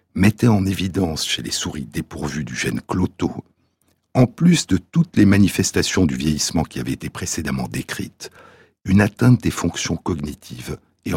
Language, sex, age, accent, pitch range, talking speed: French, male, 60-79, French, 80-110 Hz, 155 wpm